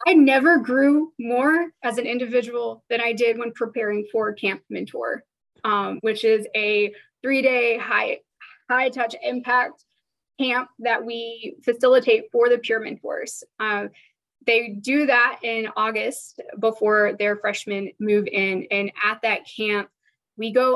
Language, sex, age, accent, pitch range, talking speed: English, female, 10-29, American, 200-240 Hz, 145 wpm